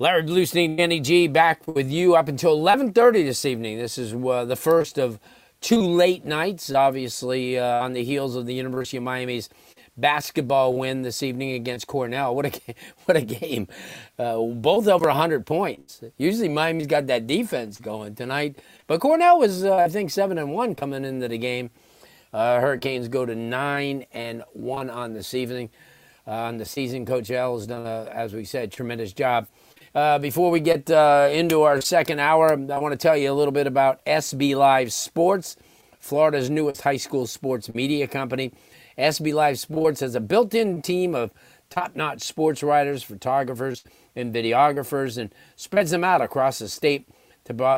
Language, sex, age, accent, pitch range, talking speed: English, male, 40-59, American, 125-155 Hz, 180 wpm